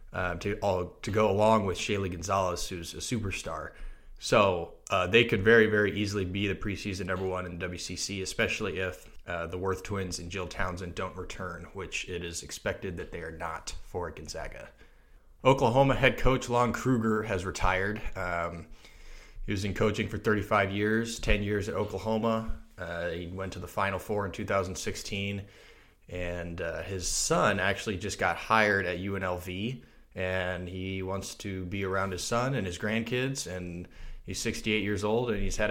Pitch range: 90-110 Hz